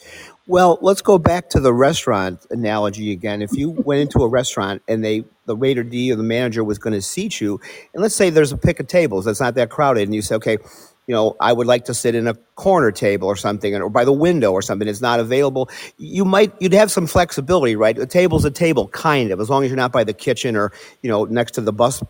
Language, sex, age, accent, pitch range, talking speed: English, male, 50-69, American, 115-155 Hz, 255 wpm